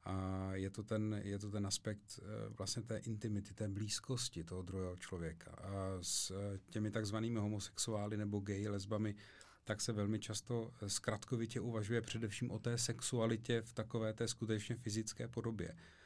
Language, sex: Czech, male